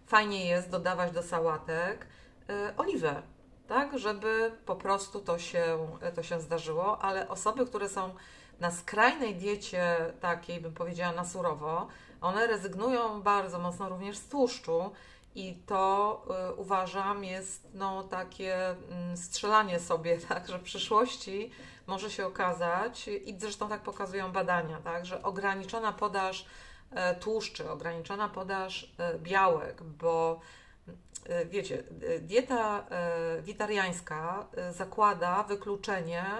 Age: 30-49